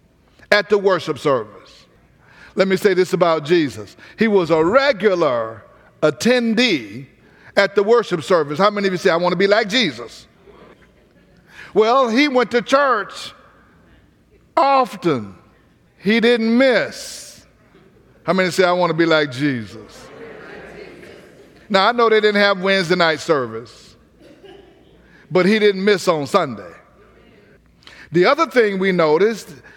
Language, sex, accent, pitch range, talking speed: English, male, American, 170-225 Hz, 135 wpm